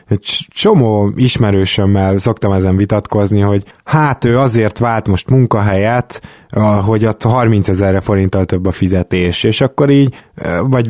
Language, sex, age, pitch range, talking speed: Hungarian, male, 20-39, 100-125 Hz, 140 wpm